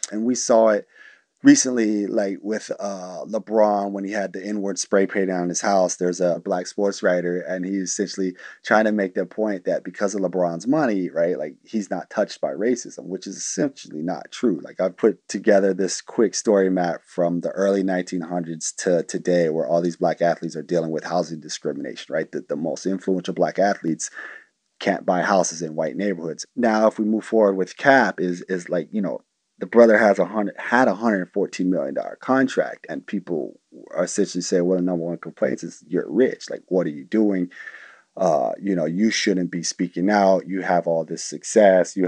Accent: American